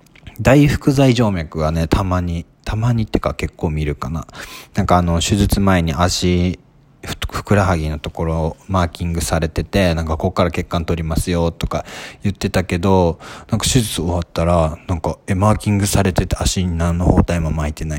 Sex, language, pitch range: male, Japanese, 80-100 Hz